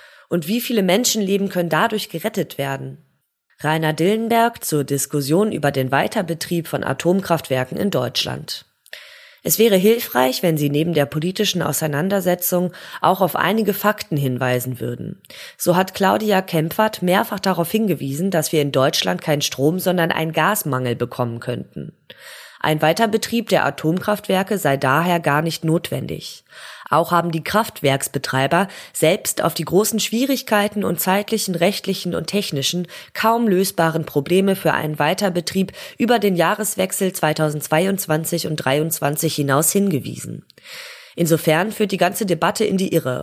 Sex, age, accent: female, 20-39, German